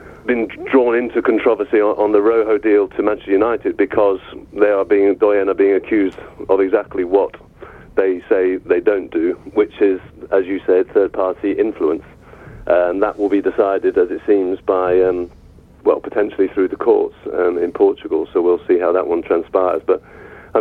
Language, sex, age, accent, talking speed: English, male, 40-59, British, 180 wpm